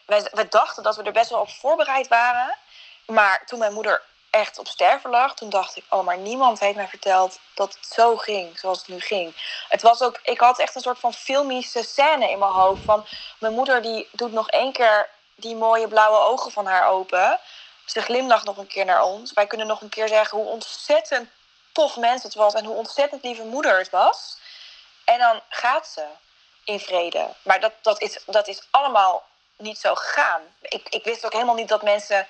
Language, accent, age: Dutch, Dutch, 20-39